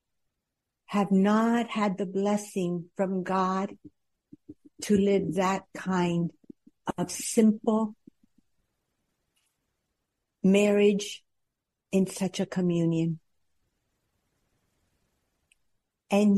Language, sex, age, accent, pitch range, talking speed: English, female, 60-79, American, 175-210 Hz, 70 wpm